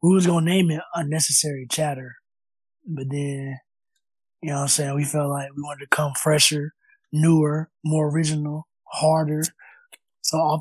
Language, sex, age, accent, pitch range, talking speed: English, male, 20-39, American, 145-165 Hz, 165 wpm